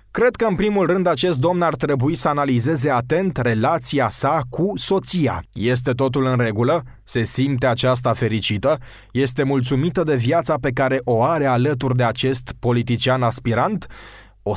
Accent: native